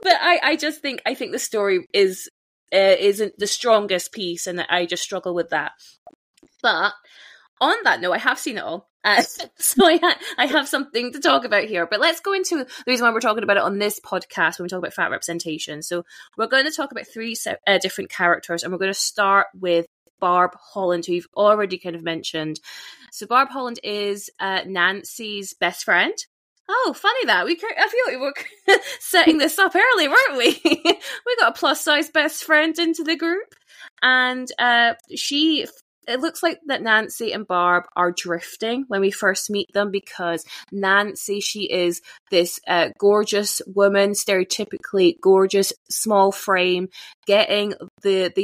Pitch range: 185-295 Hz